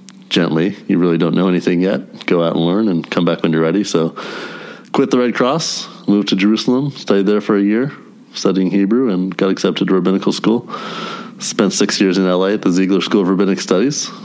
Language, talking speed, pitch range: English, 210 wpm, 85-105 Hz